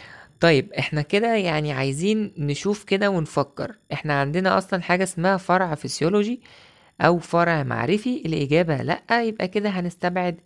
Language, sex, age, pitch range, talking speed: Arabic, female, 20-39, 135-180 Hz, 130 wpm